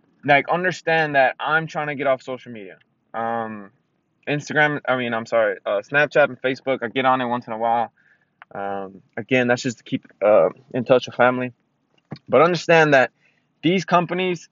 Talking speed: 180 wpm